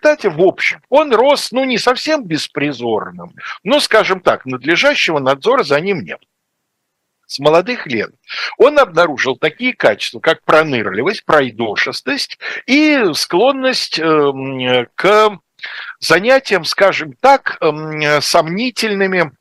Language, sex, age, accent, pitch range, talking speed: Russian, male, 60-79, native, 130-220 Hz, 105 wpm